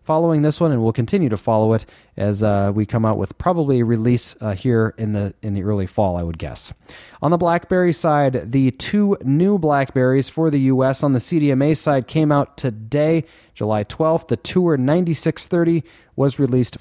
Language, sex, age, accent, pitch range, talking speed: English, male, 30-49, American, 110-150 Hz, 190 wpm